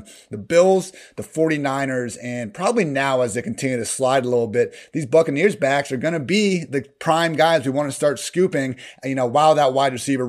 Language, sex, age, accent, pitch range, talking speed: English, male, 30-49, American, 125-160 Hz, 210 wpm